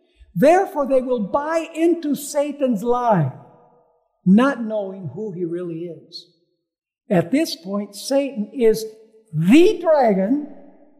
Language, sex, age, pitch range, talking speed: English, male, 60-79, 205-295 Hz, 110 wpm